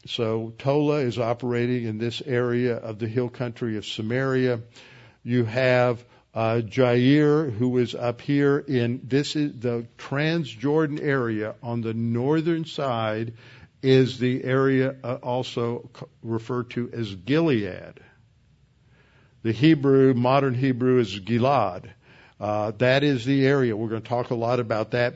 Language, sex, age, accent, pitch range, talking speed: English, male, 60-79, American, 115-130 Hz, 145 wpm